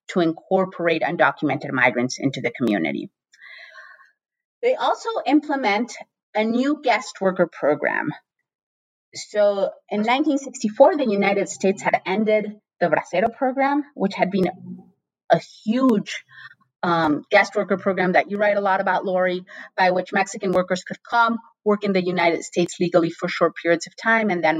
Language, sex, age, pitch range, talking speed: English, female, 30-49, 170-230 Hz, 150 wpm